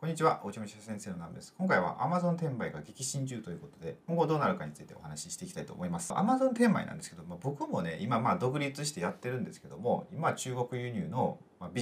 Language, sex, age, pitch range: Japanese, male, 40-59, 120-180 Hz